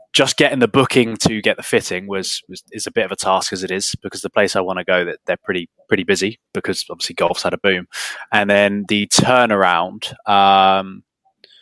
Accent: British